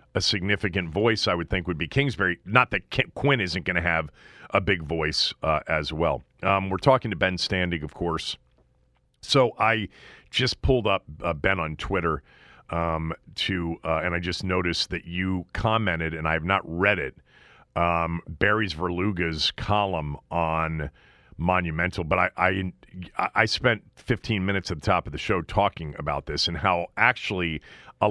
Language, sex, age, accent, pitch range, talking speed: English, male, 40-59, American, 85-105 Hz, 175 wpm